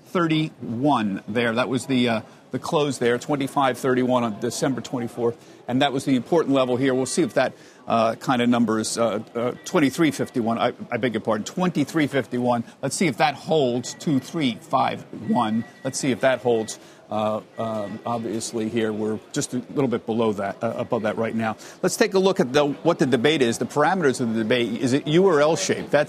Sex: male